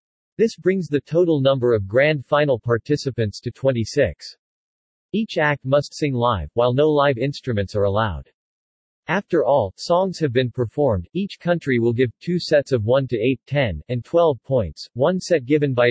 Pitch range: 120-155 Hz